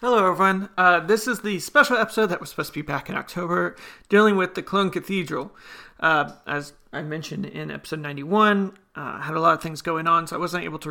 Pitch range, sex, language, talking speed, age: 165-200 Hz, male, English, 225 wpm, 30-49